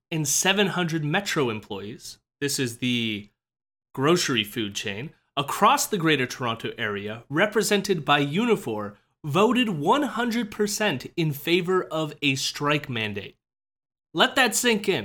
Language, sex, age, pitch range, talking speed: English, male, 30-49, 130-205 Hz, 120 wpm